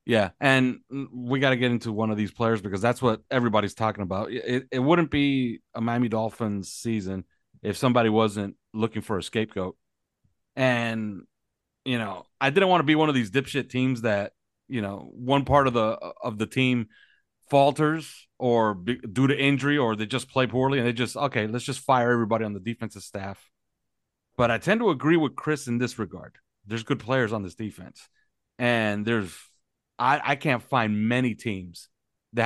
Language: English